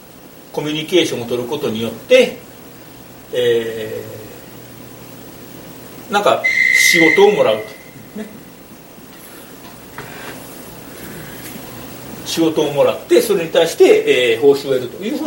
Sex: male